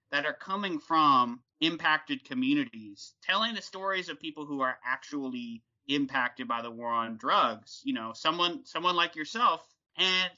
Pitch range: 125-180 Hz